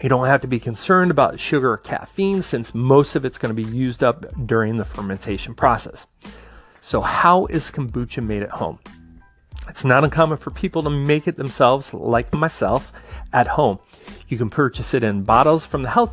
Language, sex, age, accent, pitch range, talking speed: English, male, 30-49, American, 110-155 Hz, 195 wpm